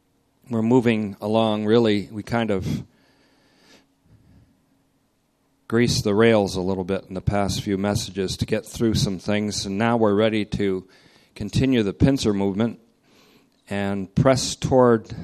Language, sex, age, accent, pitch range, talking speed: English, male, 40-59, American, 95-110 Hz, 140 wpm